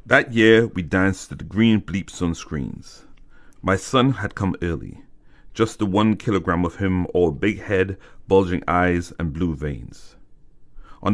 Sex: male